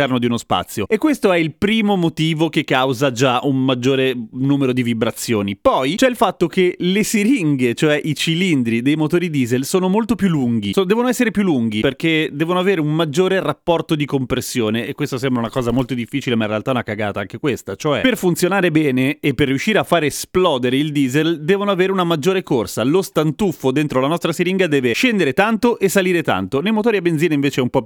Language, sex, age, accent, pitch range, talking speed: Italian, male, 30-49, native, 130-185 Hz, 215 wpm